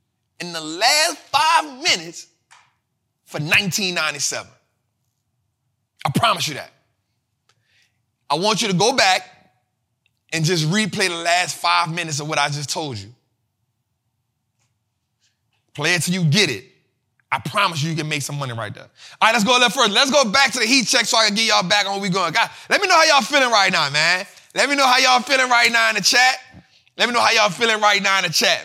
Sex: male